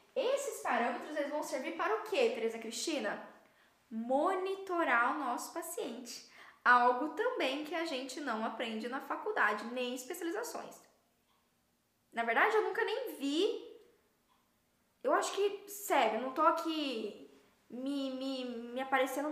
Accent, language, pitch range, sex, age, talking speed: Brazilian, Portuguese, 235-335 Hz, female, 10-29, 135 wpm